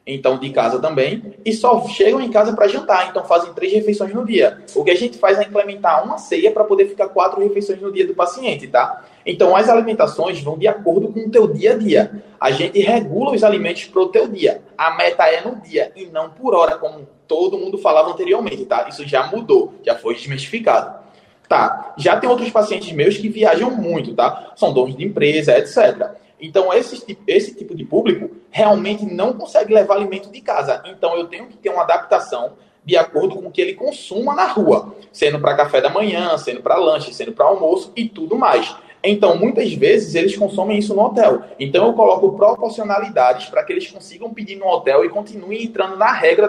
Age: 20-39